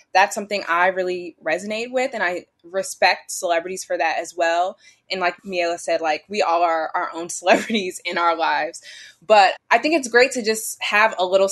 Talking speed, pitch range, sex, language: 200 wpm, 175-205 Hz, female, English